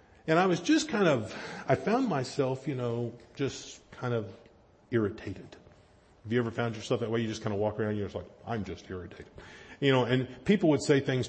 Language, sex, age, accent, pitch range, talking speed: English, male, 40-59, American, 110-140 Hz, 225 wpm